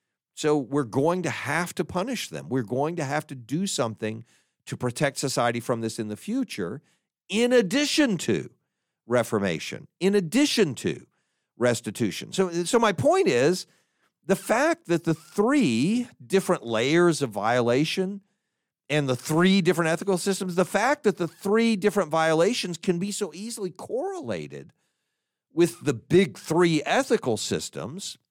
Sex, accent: male, American